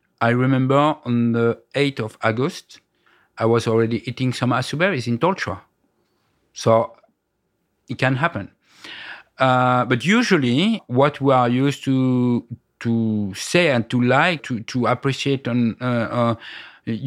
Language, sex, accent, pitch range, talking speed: English, male, French, 120-140 Hz, 130 wpm